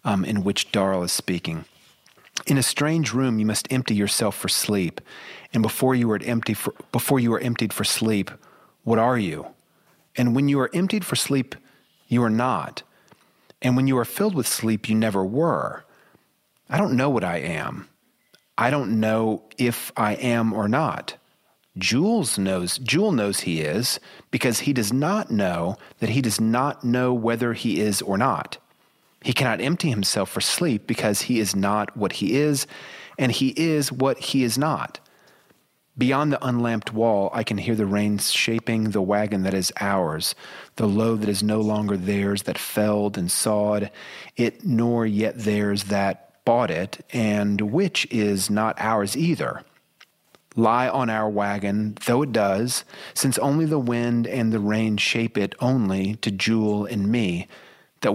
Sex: male